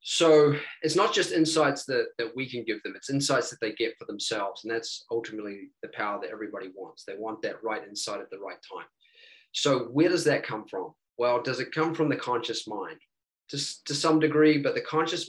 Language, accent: English, Australian